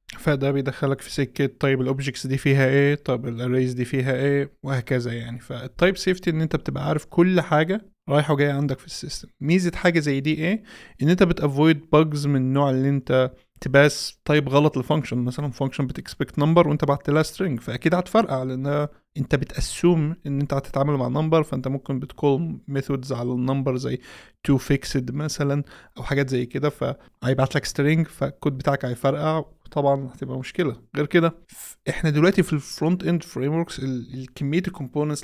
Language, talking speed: Arabic, 170 wpm